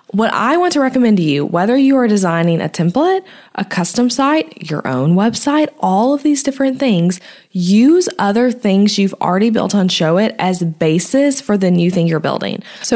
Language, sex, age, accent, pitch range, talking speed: English, female, 20-39, American, 175-230 Hz, 190 wpm